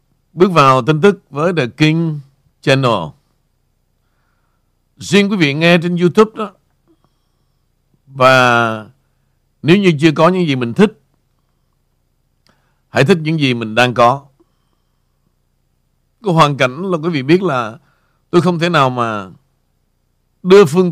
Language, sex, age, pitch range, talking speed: Vietnamese, male, 60-79, 130-170 Hz, 130 wpm